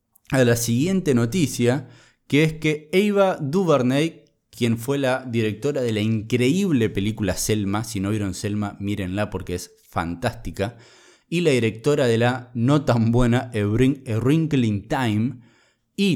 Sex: male